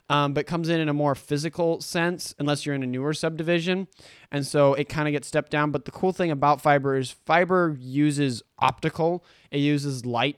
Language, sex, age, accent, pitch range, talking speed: English, male, 20-39, American, 130-155 Hz, 210 wpm